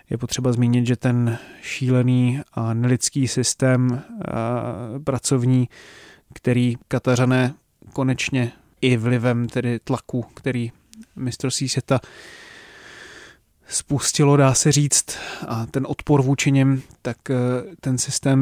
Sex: male